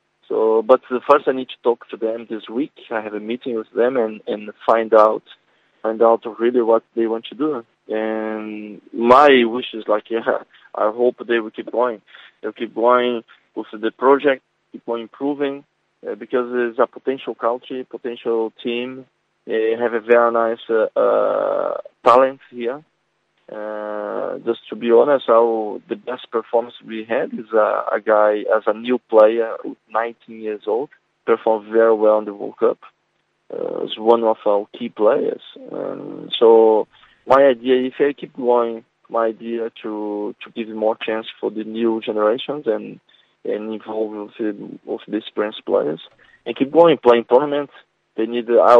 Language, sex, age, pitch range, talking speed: English, male, 20-39, 110-130 Hz, 170 wpm